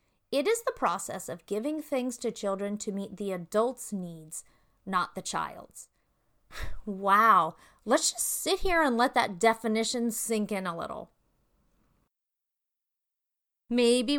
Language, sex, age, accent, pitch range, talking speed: English, female, 30-49, American, 195-260 Hz, 130 wpm